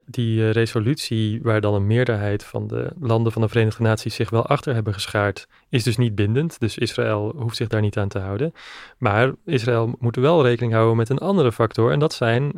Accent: Dutch